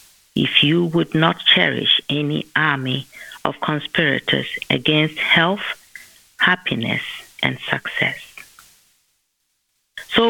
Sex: female